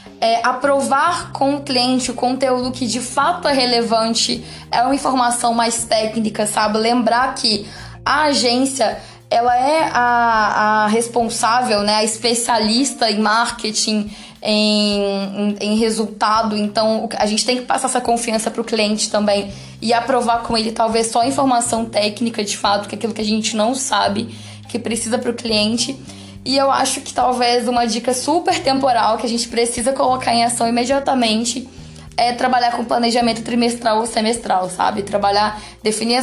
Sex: female